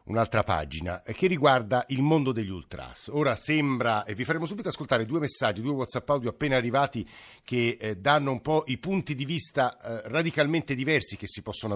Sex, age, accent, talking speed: male, 50-69, native, 180 wpm